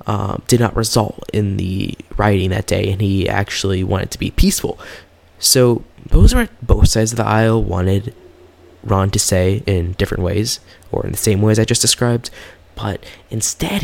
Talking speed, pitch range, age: 180 wpm, 95-120 Hz, 20-39